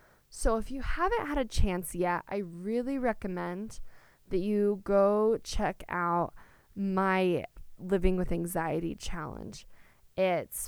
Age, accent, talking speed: 20-39, American, 125 wpm